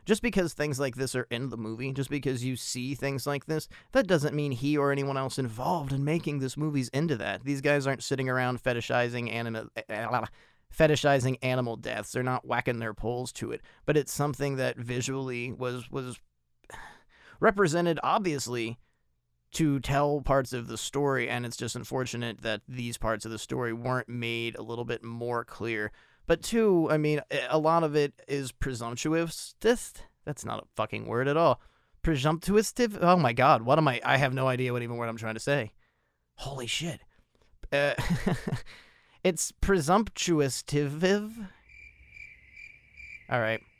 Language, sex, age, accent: English, male, 30-49, American